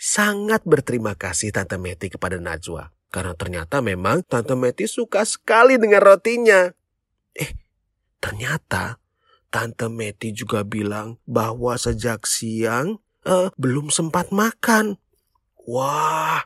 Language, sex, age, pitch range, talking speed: Indonesian, male, 30-49, 105-165 Hz, 110 wpm